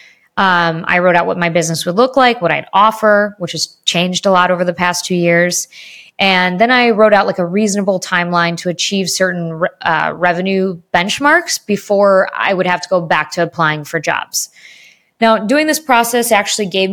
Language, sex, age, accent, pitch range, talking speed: English, female, 20-39, American, 175-210 Hz, 195 wpm